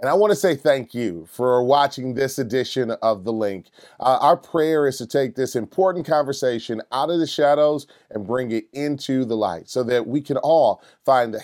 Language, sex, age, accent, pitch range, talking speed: English, male, 30-49, American, 115-150 Hz, 210 wpm